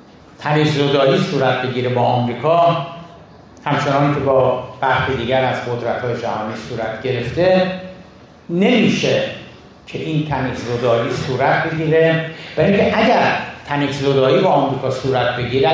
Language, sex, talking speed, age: Persian, male, 110 wpm, 60-79